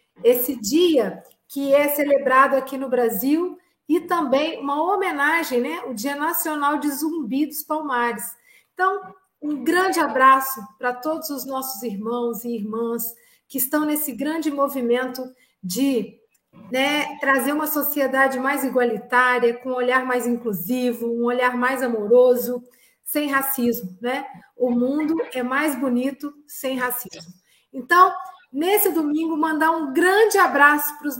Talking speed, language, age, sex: 135 wpm, Portuguese, 40-59, female